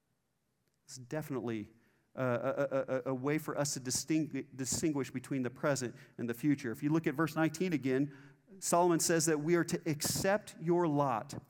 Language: English